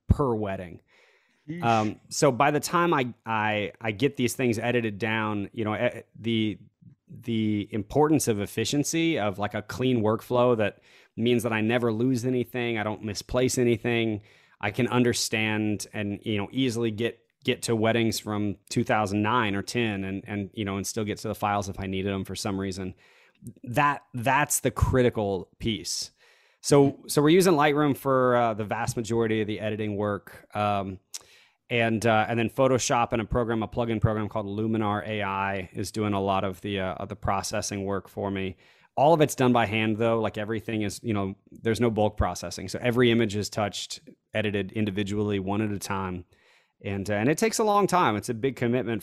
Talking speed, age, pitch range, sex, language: 190 wpm, 20-39, 100-125 Hz, male, English